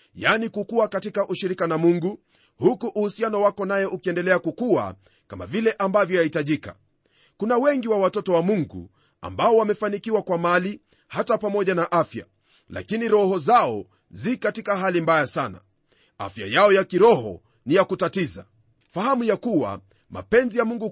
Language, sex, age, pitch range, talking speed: Swahili, male, 40-59, 160-215 Hz, 145 wpm